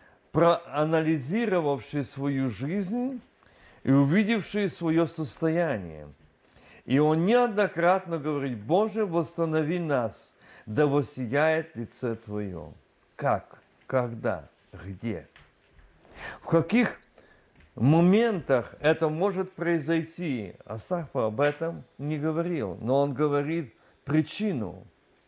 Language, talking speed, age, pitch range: Russian, 85 wpm, 50-69, 130-200 Hz